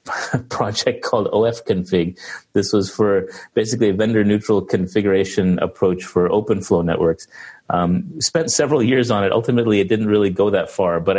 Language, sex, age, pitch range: English, male, 30-49, 90-105 Hz